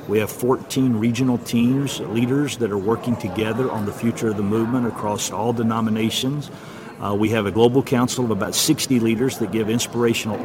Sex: male